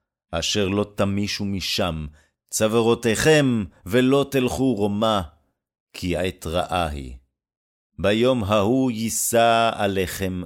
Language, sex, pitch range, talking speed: Hebrew, male, 90-120 Hz, 90 wpm